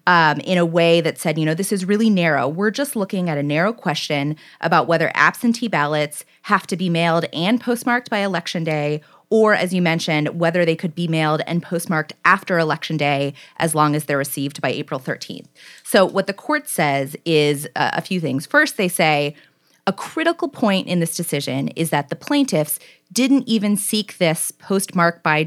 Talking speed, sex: 195 wpm, female